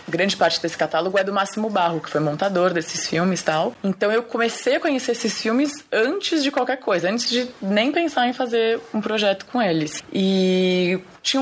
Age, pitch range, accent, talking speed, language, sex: 20-39, 180-245 Hz, Brazilian, 200 wpm, Portuguese, female